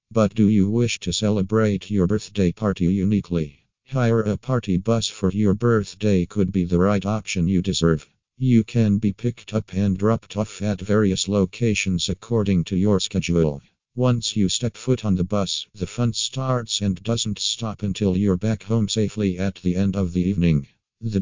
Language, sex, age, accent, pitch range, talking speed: English, male, 50-69, American, 95-110 Hz, 180 wpm